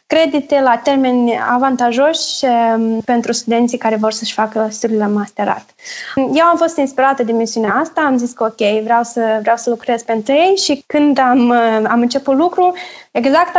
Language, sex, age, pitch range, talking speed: Romanian, female, 20-39, 230-290 Hz, 170 wpm